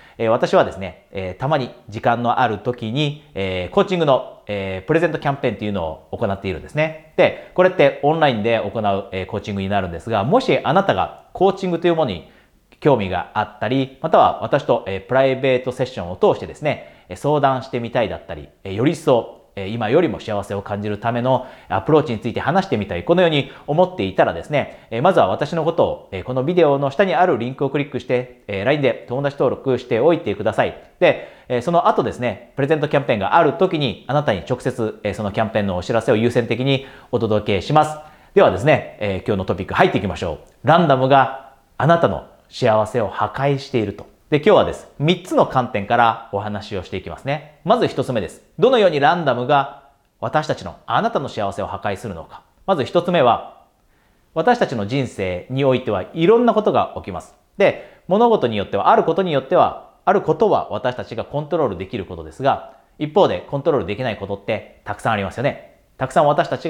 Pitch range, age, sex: 105-150 Hz, 40-59, male